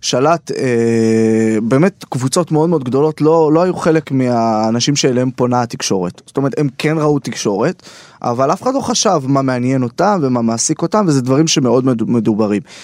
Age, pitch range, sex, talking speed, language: 20-39, 120-160 Hz, male, 165 wpm, Hebrew